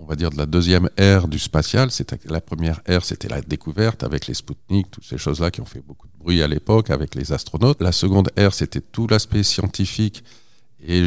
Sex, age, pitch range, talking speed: male, 50-69, 80-105 Hz, 220 wpm